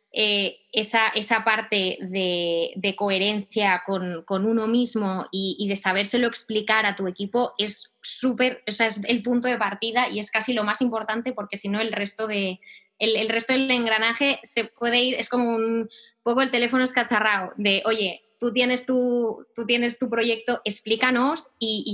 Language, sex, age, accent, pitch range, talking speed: Spanish, female, 20-39, Spanish, 205-240 Hz, 185 wpm